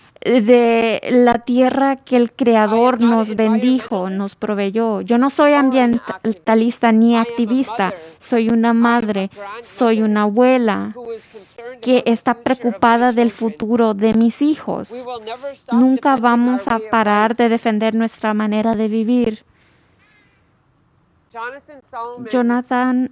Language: English